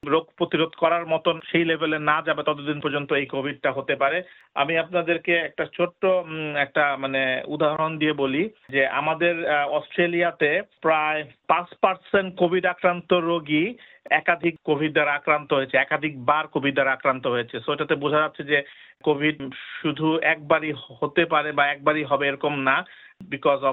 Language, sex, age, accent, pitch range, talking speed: Bengali, male, 50-69, native, 140-170 Hz, 85 wpm